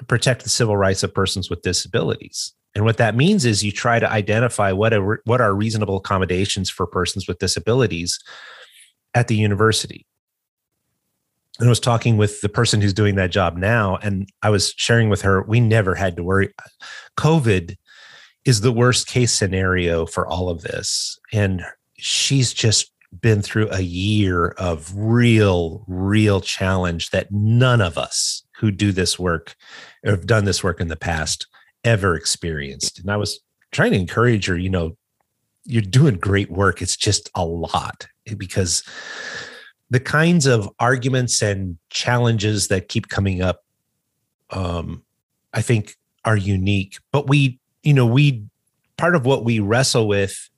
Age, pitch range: 30-49, 95-120 Hz